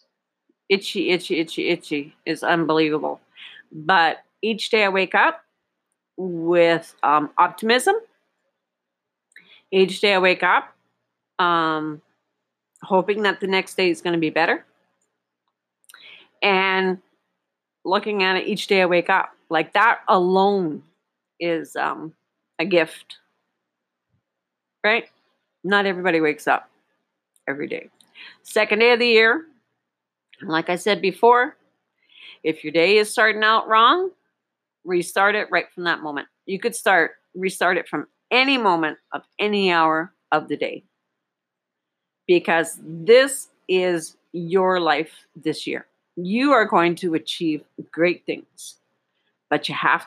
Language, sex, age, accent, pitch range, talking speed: English, female, 40-59, American, 155-210 Hz, 130 wpm